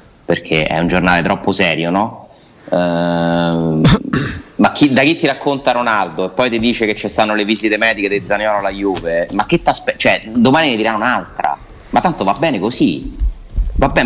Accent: native